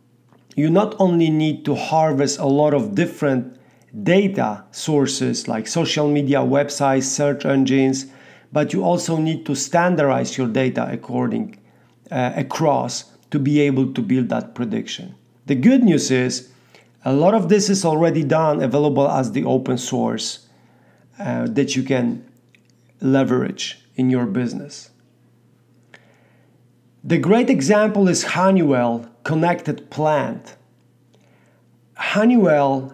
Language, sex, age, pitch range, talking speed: English, male, 50-69, 130-160 Hz, 125 wpm